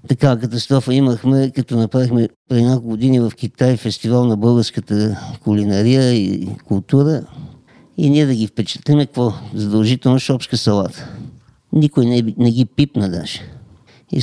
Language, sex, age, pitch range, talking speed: Bulgarian, male, 50-69, 120-150 Hz, 130 wpm